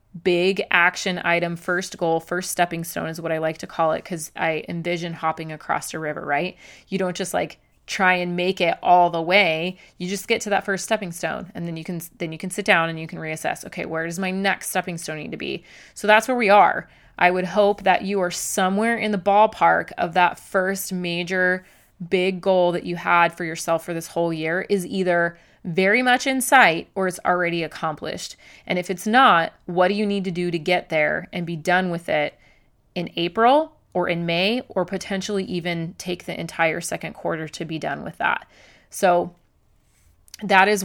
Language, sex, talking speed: English, female, 210 wpm